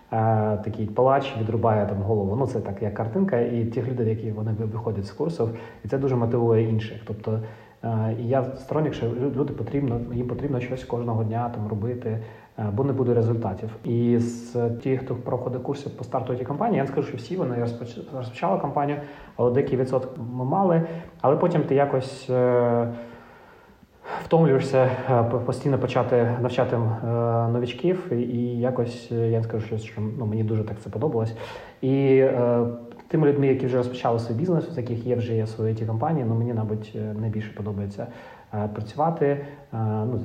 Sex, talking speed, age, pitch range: male, 165 wpm, 30-49, 110-130 Hz